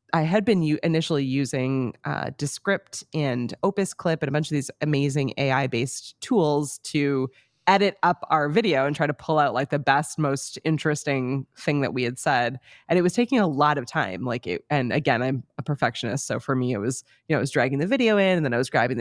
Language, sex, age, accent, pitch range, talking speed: English, female, 20-39, American, 135-180 Hz, 225 wpm